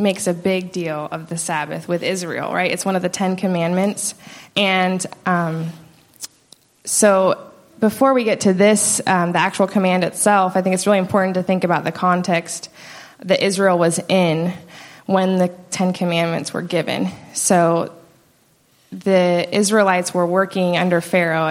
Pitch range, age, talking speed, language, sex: 170-190 Hz, 20-39, 155 wpm, English, female